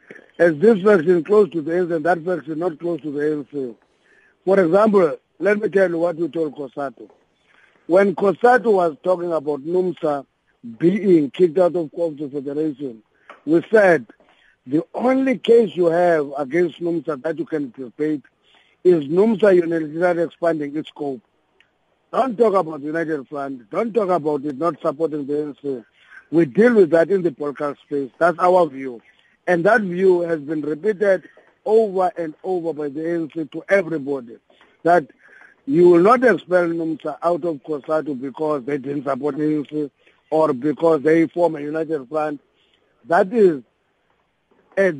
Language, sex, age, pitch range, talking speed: English, male, 50-69, 150-185 Hz, 165 wpm